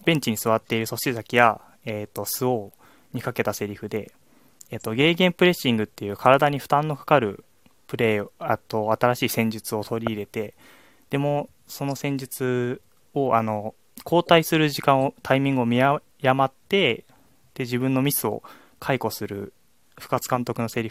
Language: Japanese